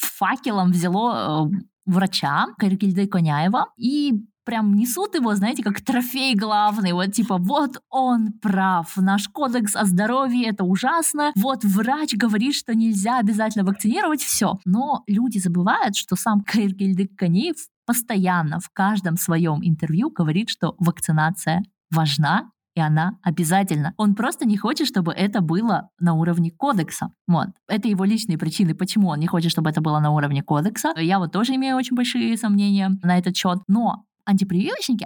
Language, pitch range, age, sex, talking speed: Russian, 185-240 Hz, 20-39, female, 150 wpm